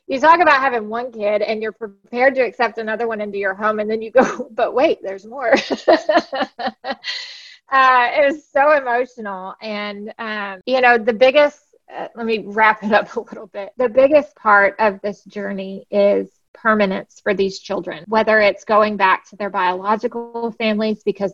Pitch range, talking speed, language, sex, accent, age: 195-225 Hz, 180 wpm, English, female, American, 20-39